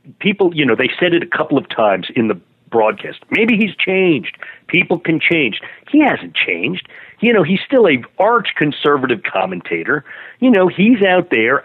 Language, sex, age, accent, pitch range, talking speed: English, male, 50-69, American, 130-185 Hz, 180 wpm